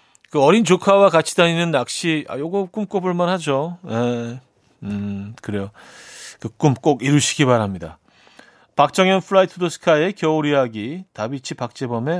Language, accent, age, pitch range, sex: Korean, native, 40-59, 120-175 Hz, male